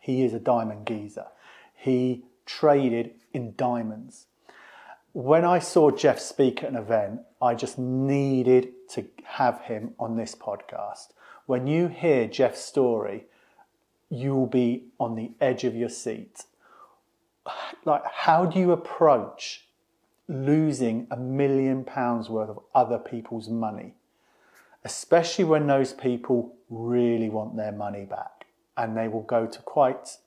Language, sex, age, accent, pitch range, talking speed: English, male, 40-59, British, 115-145 Hz, 135 wpm